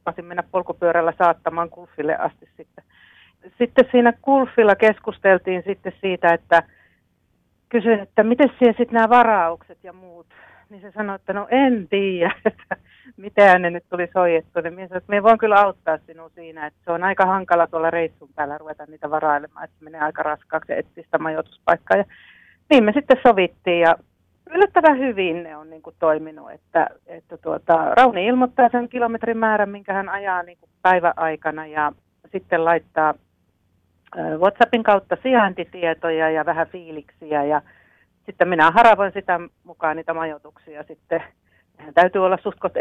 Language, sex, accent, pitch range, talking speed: Finnish, female, native, 160-205 Hz, 155 wpm